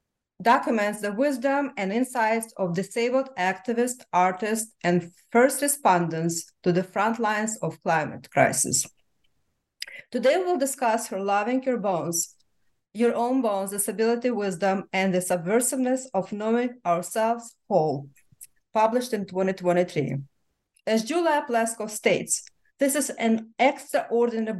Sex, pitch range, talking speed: female, 190-255 Hz, 120 wpm